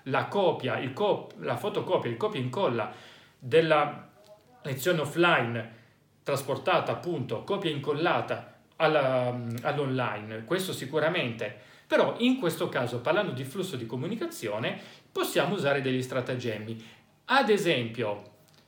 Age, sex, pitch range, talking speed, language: 40-59, male, 120-180 Hz, 110 wpm, Italian